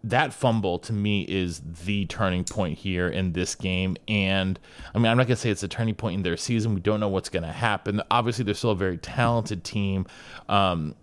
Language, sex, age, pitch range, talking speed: English, male, 30-49, 100-125 Hz, 220 wpm